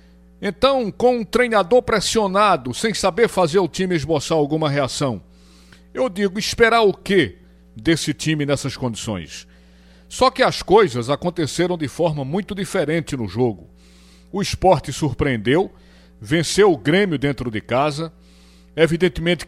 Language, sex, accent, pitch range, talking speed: Portuguese, male, Brazilian, 115-185 Hz, 130 wpm